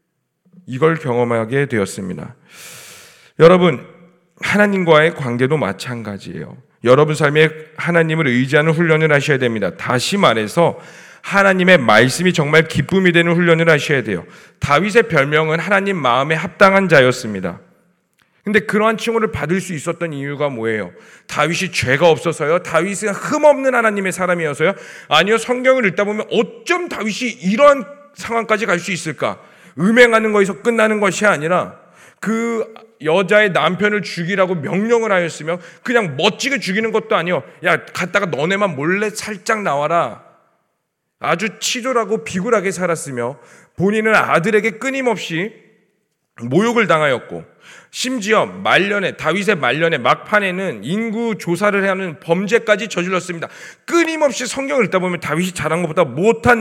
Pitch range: 160-220 Hz